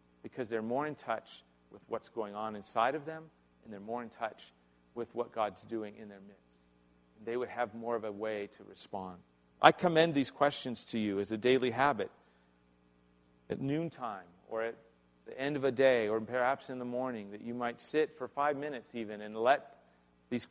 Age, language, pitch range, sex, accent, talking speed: 40-59, English, 100-135 Hz, male, American, 200 wpm